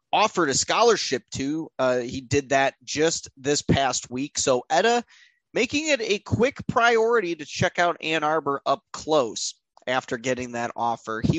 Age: 20-39